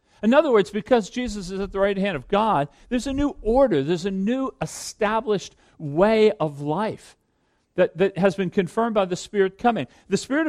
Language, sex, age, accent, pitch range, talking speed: English, male, 50-69, American, 175-235 Hz, 195 wpm